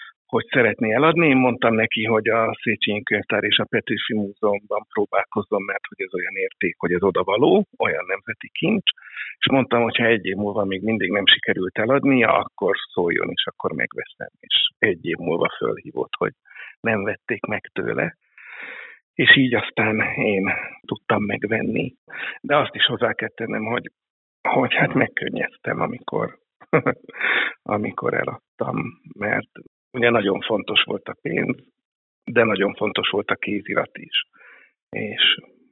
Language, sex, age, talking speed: Hungarian, male, 50-69, 145 wpm